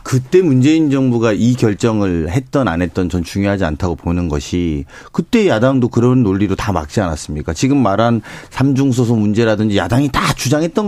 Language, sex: Korean, male